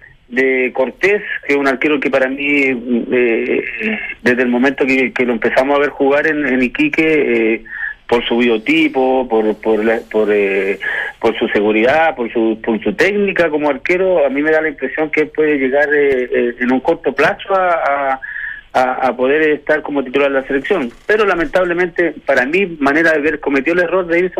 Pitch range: 130-170 Hz